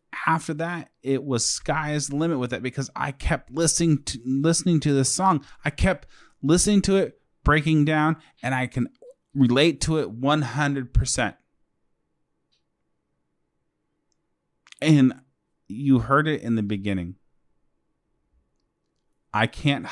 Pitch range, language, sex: 100-140 Hz, English, male